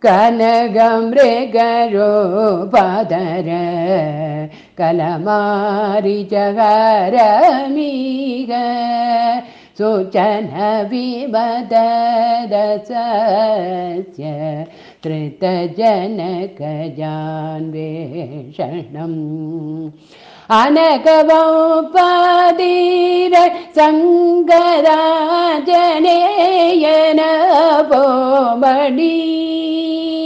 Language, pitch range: Tamil, 205-320 Hz